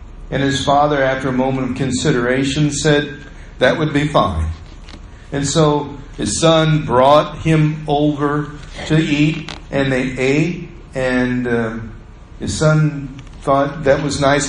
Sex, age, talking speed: male, 50-69, 135 wpm